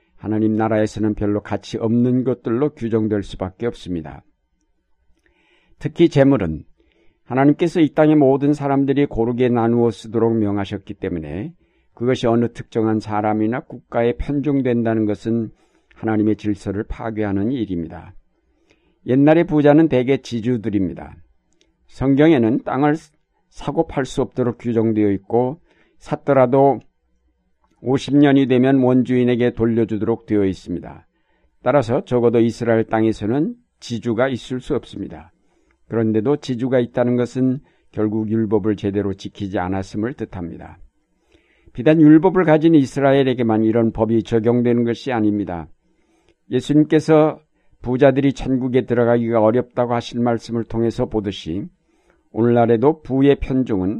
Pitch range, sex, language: 105-130 Hz, male, Korean